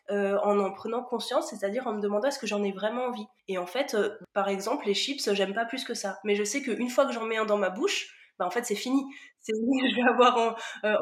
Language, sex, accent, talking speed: French, female, French, 280 wpm